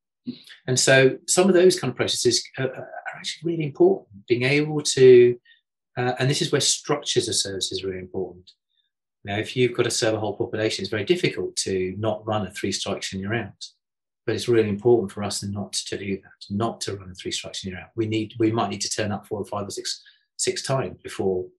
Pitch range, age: 95-150 Hz, 30-49